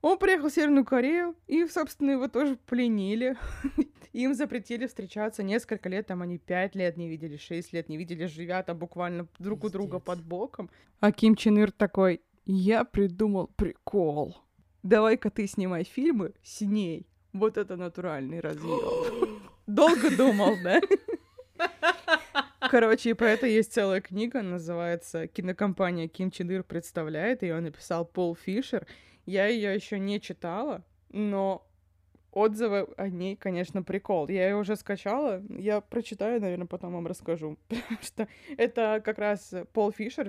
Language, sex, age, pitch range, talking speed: Russian, female, 20-39, 180-240 Hz, 145 wpm